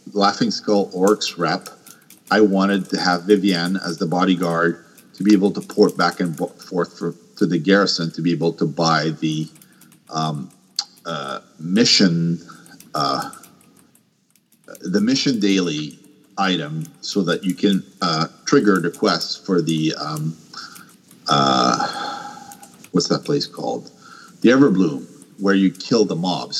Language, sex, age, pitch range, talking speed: English, male, 50-69, 85-100 Hz, 140 wpm